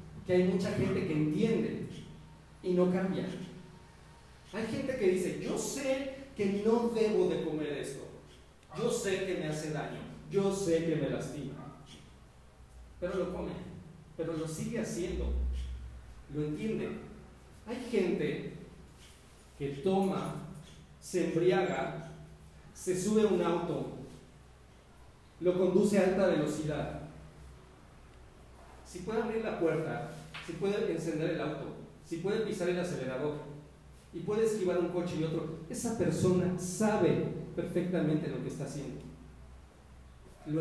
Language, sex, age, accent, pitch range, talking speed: Spanish, male, 40-59, Mexican, 150-185 Hz, 130 wpm